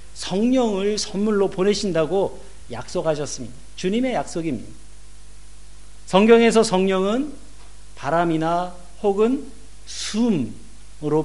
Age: 50-69